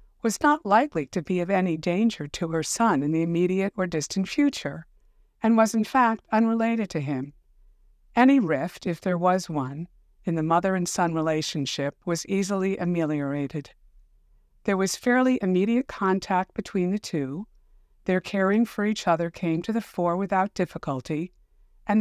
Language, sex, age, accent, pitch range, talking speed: English, female, 60-79, American, 155-205 Hz, 160 wpm